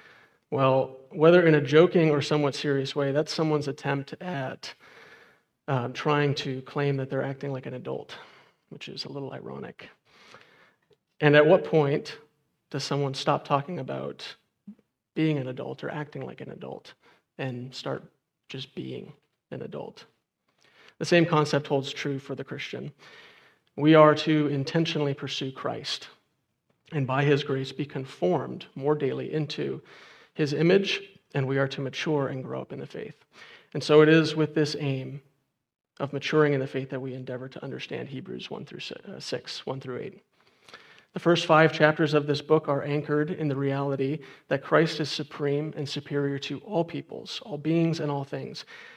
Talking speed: 170 wpm